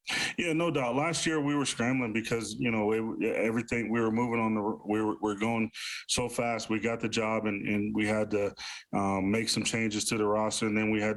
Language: English